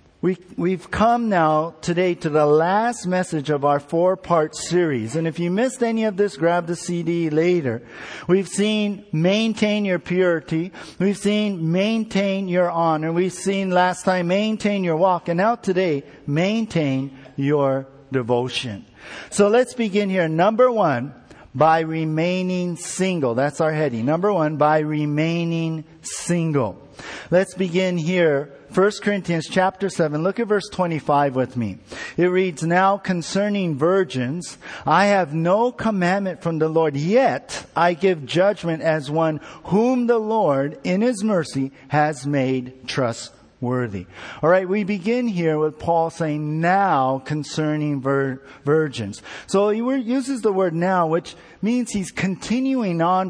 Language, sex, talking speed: English, male, 145 wpm